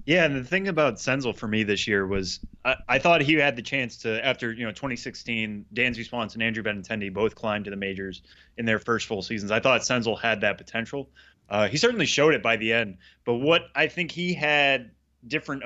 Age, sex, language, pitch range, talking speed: 20-39, male, English, 105-135 Hz, 230 wpm